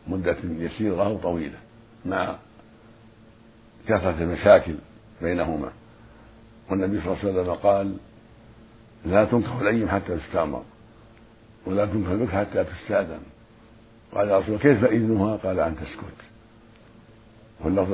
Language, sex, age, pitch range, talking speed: Arabic, male, 60-79, 95-115 Hz, 105 wpm